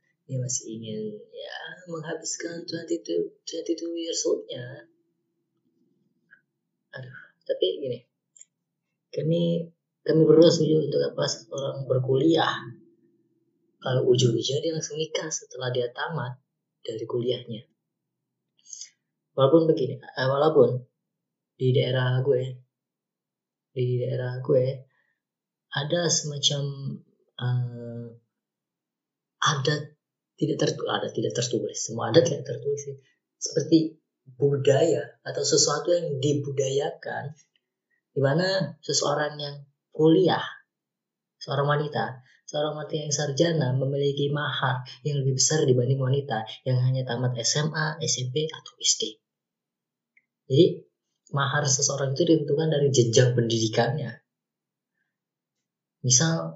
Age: 20-39